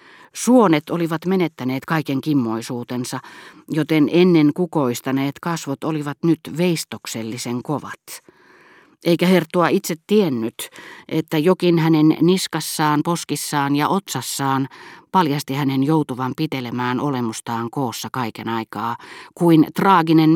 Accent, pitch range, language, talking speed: native, 130-170 Hz, Finnish, 100 wpm